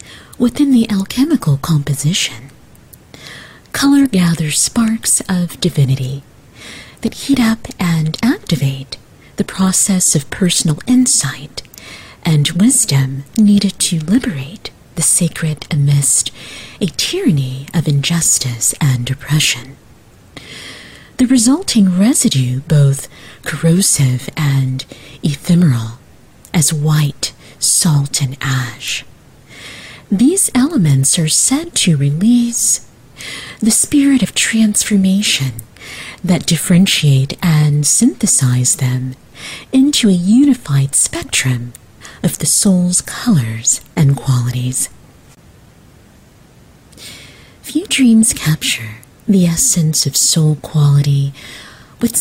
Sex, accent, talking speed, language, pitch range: female, American, 90 wpm, English, 135-205 Hz